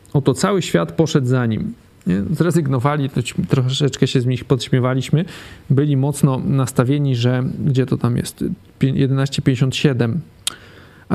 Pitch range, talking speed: 130-160 Hz, 115 wpm